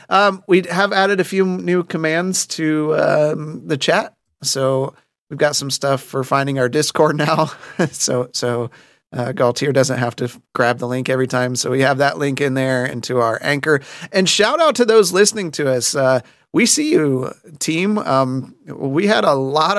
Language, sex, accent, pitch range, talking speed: English, male, American, 130-165 Hz, 195 wpm